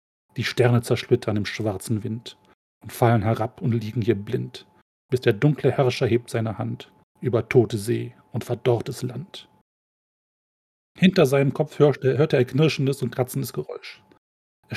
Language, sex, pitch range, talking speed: German, male, 120-140 Hz, 155 wpm